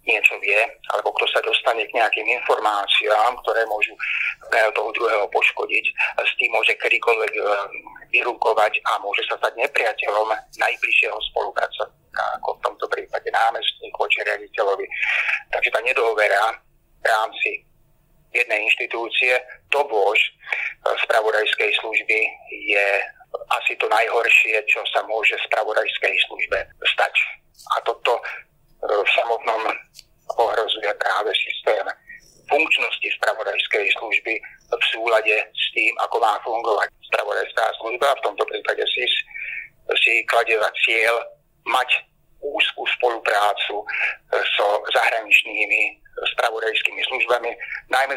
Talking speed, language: 110 wpm, Slovak